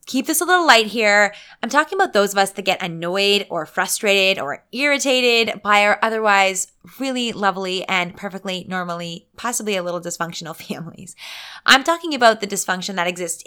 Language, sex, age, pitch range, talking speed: English, female, 20-39, 185-240 Hz, 175 wpm